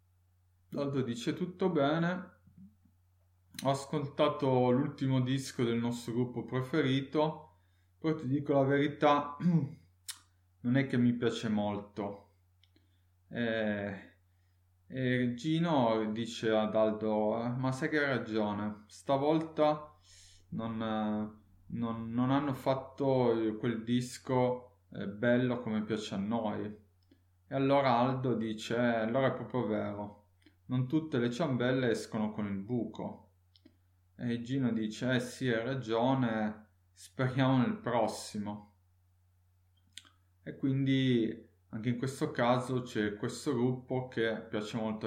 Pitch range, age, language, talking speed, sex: 100-130 Hz, 20-39, Italian, 115 wpm, male